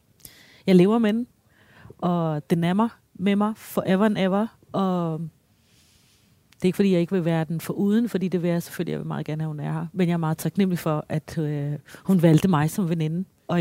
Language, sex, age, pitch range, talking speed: Danish, female, 30-49, 160-210 Hz, 230 wpm